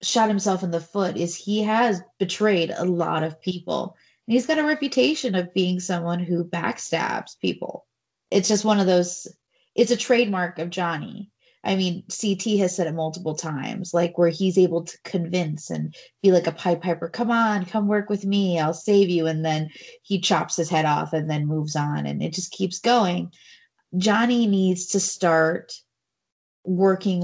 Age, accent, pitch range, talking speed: 20-39, American, 170-205 Hz, 185 wpm